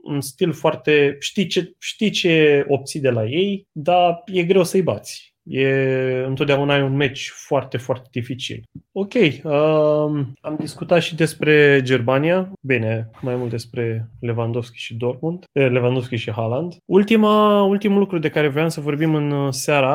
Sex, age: male, 20-39